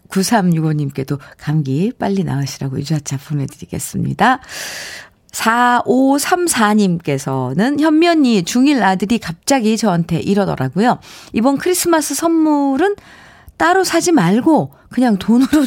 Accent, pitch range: native, 170-265 Hz